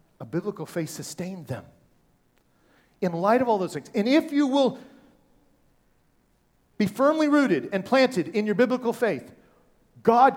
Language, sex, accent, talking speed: English, male, American, 145 wpm